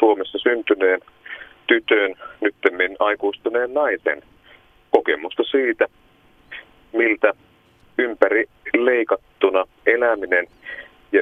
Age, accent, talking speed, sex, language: 30-49, native, 65 wpm, male, Finnish